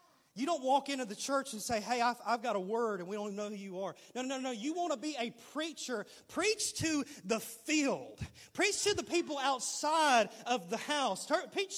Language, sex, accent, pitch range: English, male, American, 185-275 Hz